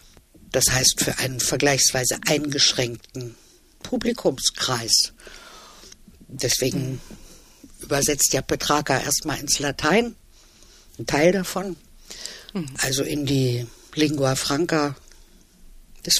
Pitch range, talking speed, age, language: 145-205 Hz, 85 wpm, 60-79, German